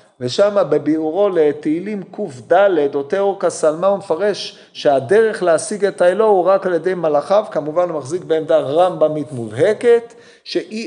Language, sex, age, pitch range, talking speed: Hebrew, male, 40-59, 155-215 Hz, 140 wpm